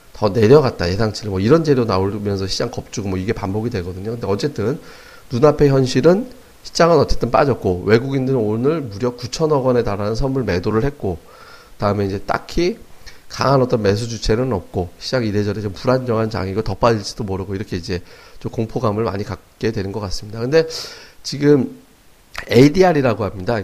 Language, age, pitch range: Korean, 40-59, 105-135 Hz